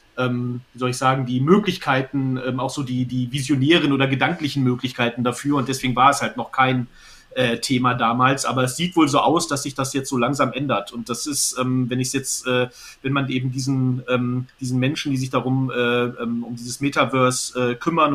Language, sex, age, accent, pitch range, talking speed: English, male, 40-59, German, 125-145 Hz, 220 wpm